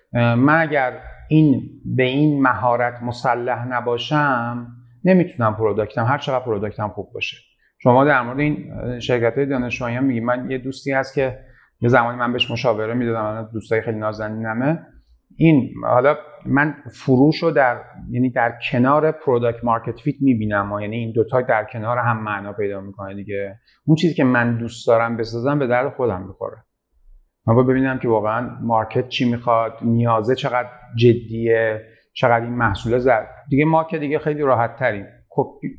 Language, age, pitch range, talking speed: Persian, 40-59, 115-140 Hz, 155 wpm